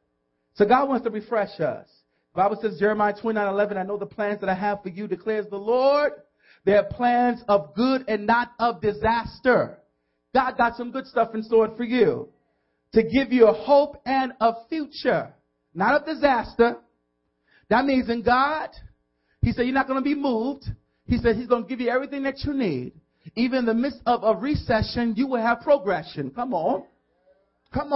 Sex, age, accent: male, 40-59, American